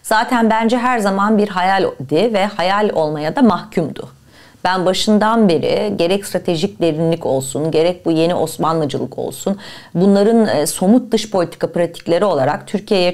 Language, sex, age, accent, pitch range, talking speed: Turkish, female, 40-59, native, 175-250 Hz, 140 wpm